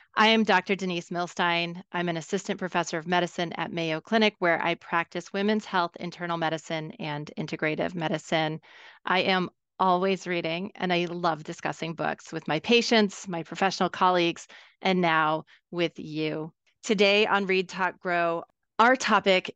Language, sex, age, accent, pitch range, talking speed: English, female, 30-49, American, 165-195 Hz, 155 wpm